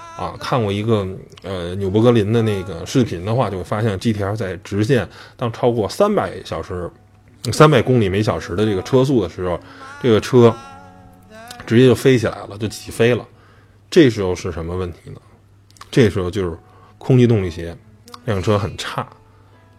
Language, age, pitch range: Chinese, 20-39, 95-120 Hz